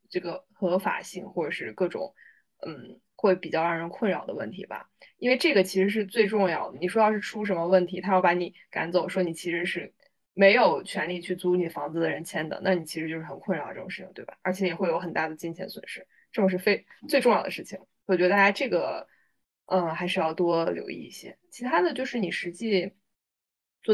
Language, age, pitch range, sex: Chinese, 20-39, 175-200 Hz, female